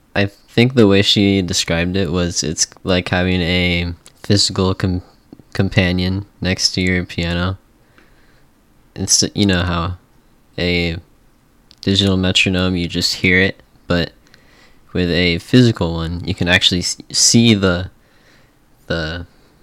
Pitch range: 85-100 Hz